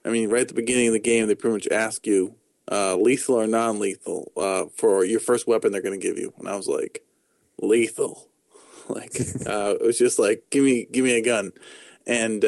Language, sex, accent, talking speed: English, male, American, 220 wpm